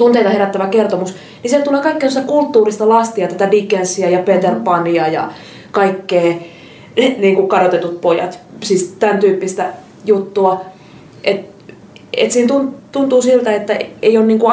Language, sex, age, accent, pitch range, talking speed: Finnish, female, 20-39, native, 180-210 Hz, 135 wpm